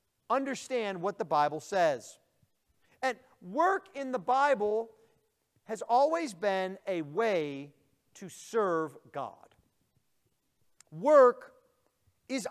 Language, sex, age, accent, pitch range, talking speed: English, male, 40-59, American, 210-295 Hz, 95 wpm